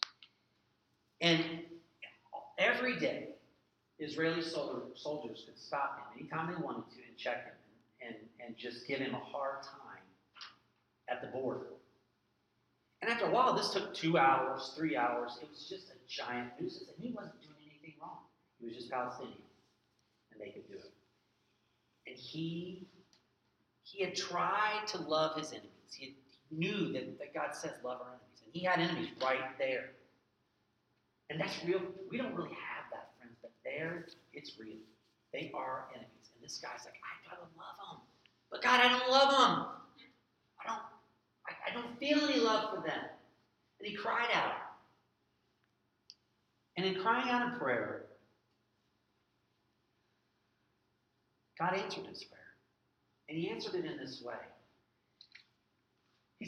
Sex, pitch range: male, 125-200 Hz